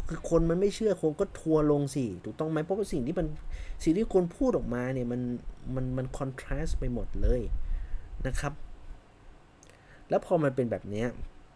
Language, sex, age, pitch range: Thai, male, 30-49, 110-160 Hz